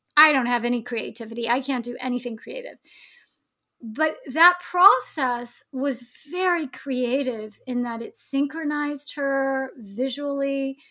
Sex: female